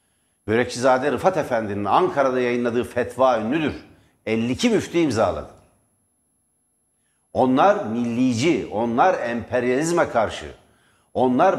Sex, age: male, 60-79